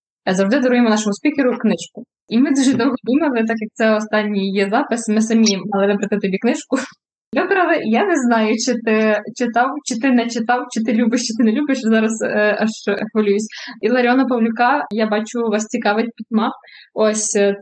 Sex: female